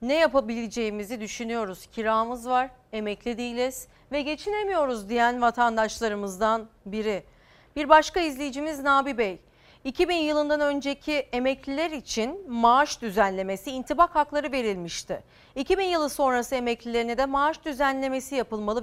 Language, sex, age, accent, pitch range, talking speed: Turkish, female, 40-59, native, 215-280 Hz, 110 wpm